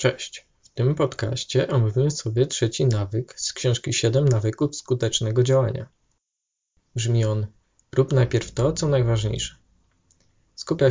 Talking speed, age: 120 wpm, 20-39